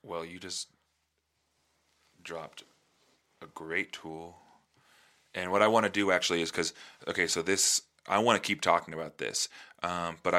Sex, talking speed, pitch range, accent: male, 160 wpm, 85-90 Hz, American